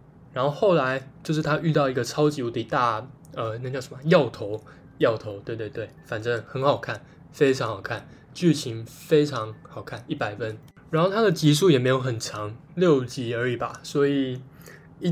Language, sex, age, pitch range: Chinese, male, 20-39, 125-155 Hz